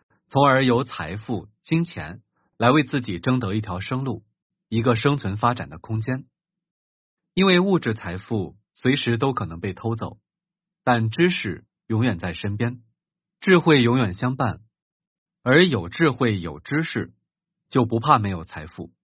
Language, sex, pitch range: Chinese, male, 110-170 Hz